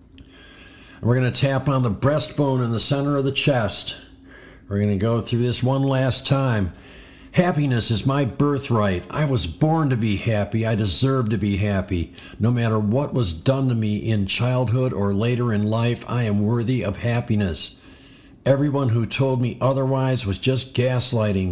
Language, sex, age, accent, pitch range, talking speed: English, male, 50-69, American, 105-130 Hz, 175 wpm